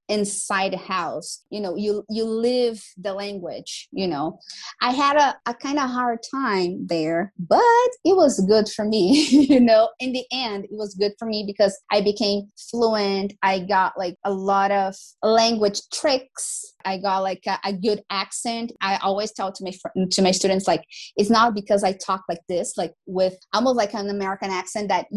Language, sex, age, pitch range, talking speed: English, female, 20-39, 195-235 Hz, 195 wpm